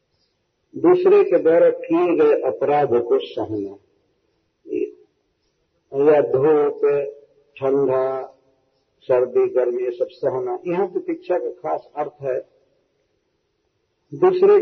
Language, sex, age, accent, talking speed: Hindi, male, 50-69, native, 95 wpm